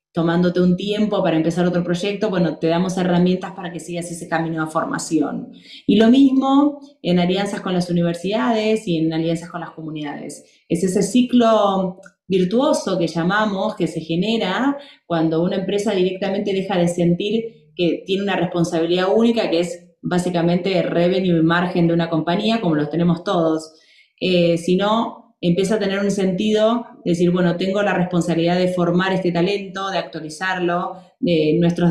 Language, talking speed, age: Spanish, 165 wpm, 20-39